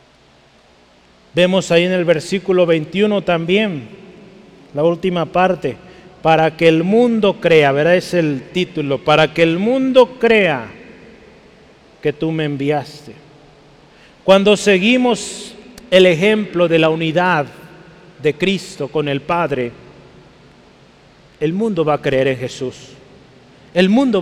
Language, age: Spanish, 40-59